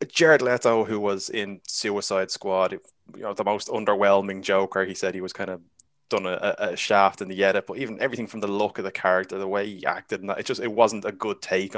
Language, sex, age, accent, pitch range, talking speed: English, male, 20-39, Irish, 100-115 Hz, 245 wpm